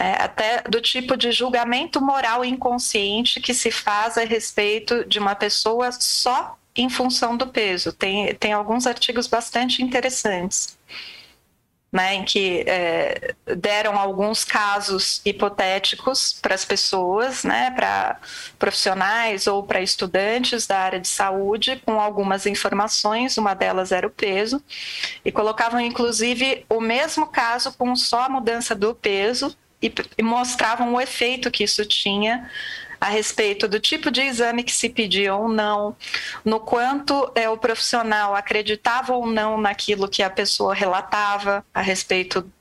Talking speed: 140 wpm